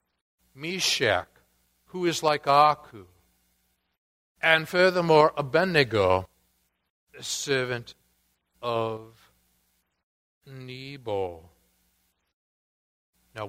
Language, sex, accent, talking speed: English, male, American, 60 wpm